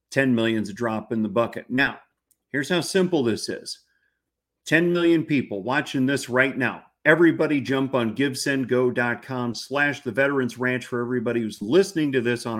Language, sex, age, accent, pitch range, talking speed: English, male, 50-69, American, 115-155 Hz, 175 wpm